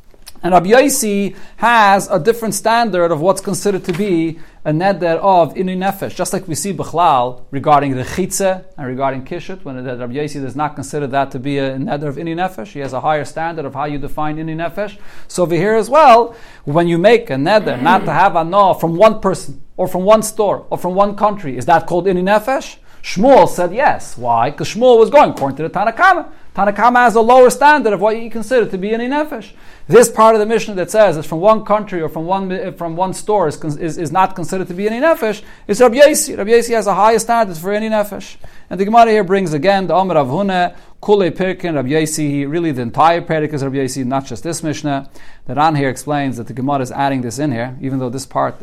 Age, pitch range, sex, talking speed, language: 40-59, 145-210 Hz, male, 225 wpm, English